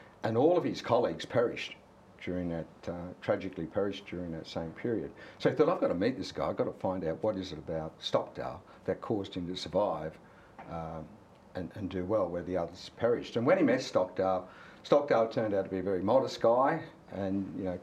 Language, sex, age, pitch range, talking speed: English, male, 60-79, 95-115 Hz, 220 wpm